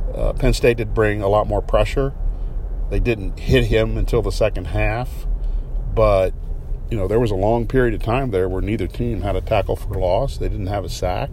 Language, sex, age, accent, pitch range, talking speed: English, male, 50-69, American, 90-110 Hz, 215 wpm